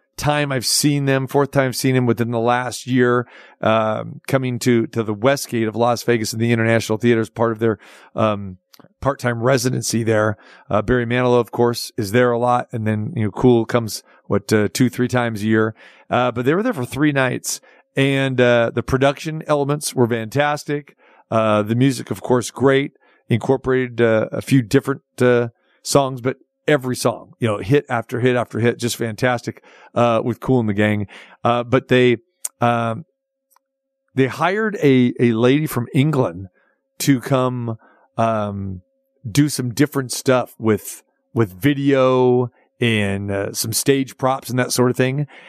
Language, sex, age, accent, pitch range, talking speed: English, male, 40-59, American, 115-135 Hz, 175 wpm